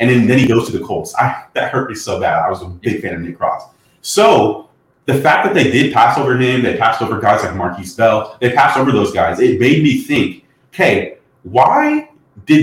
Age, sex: 30-49, male